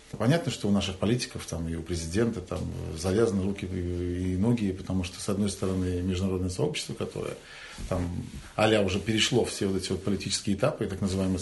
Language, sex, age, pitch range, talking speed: Ukrainian, male, 40-59, 95-125 Hz, 180 wpm